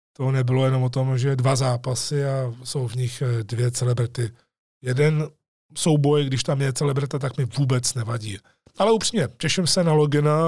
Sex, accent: male, native